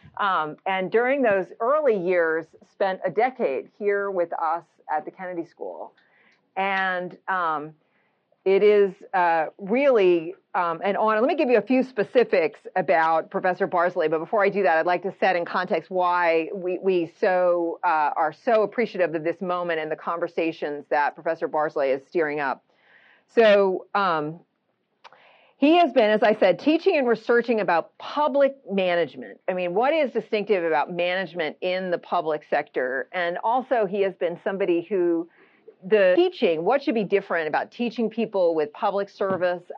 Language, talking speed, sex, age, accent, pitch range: English, 165 wpm, female, 40-59, American, 170-215 Hz